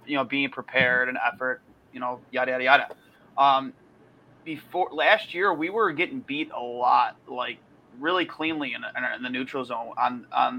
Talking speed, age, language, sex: 175 wpm, 30-49, English, male